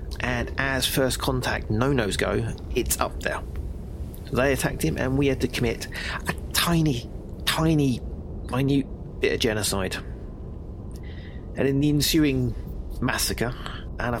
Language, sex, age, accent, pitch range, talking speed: English, male, 30-49, British, 85-125 Hz, 125 wpm